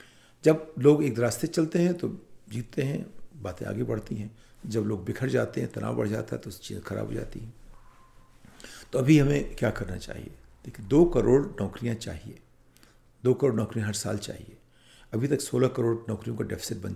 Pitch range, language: 105-135 Hz, Hindi